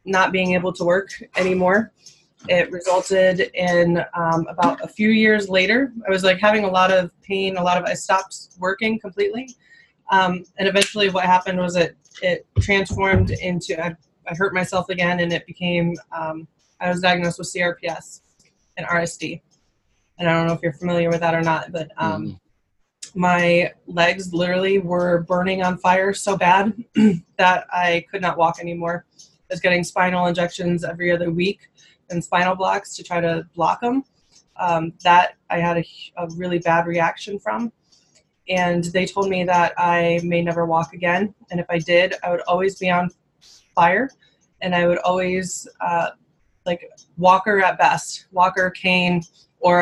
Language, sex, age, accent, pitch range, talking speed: English, female, 20-39, American, 170-185 Hz, 170 wpm